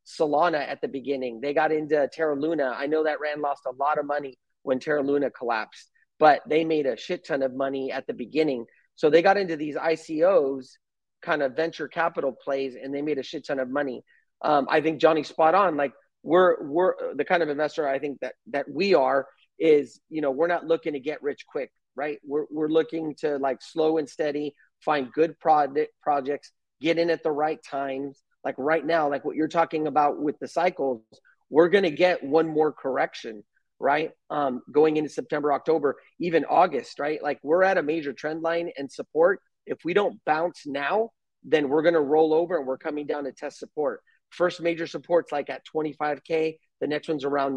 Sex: male